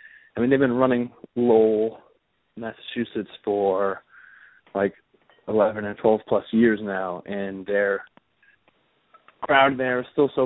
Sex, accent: male, American